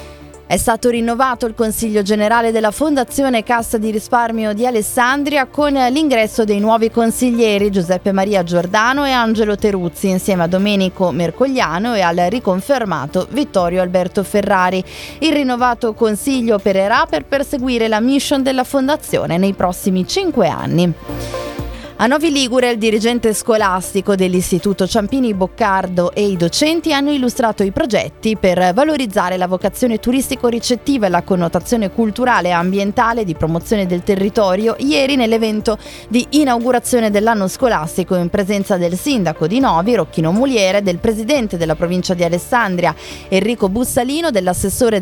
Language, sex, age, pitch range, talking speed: Italian, female, 20-39, 185-245 Hz, 135 wpm